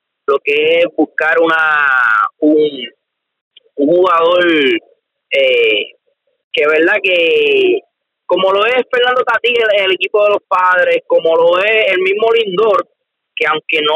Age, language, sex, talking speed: 30-49, Spanish, male, 140 wpm